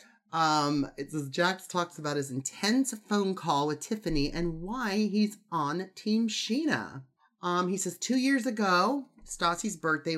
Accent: American